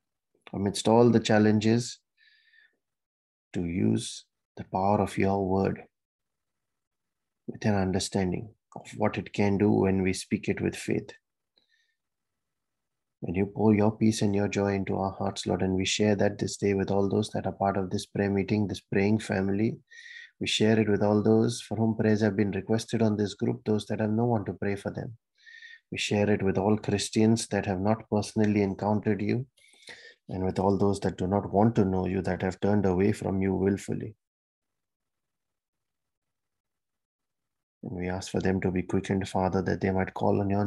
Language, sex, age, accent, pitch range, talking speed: English, male, 30-49, Indian, 95-110 Hz, 185 wpm